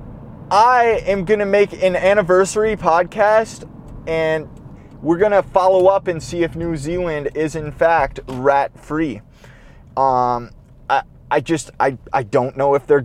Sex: male